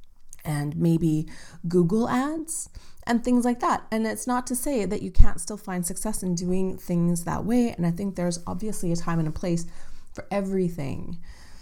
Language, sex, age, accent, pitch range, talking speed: English, female, 30-49, American, 150-195 Hz, 185 wpm